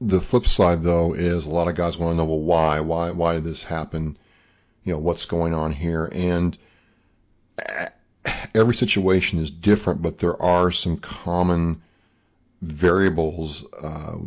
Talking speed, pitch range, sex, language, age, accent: 155 wpm, 80-95 Hz, male, English, 40-59, American